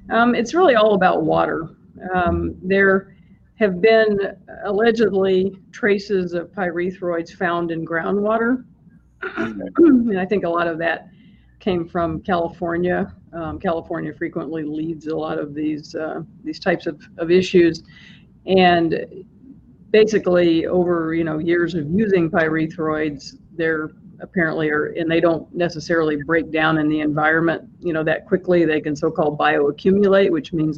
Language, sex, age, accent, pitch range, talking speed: English, female, 50-69, American, 155-185 Hz, 140 wpm